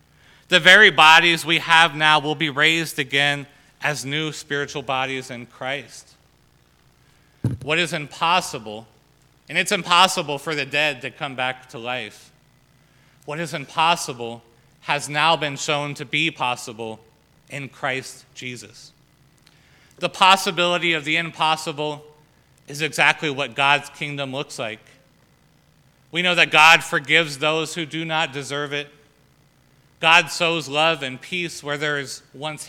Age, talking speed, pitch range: 30-49, 140 wpm, 140-160 Hz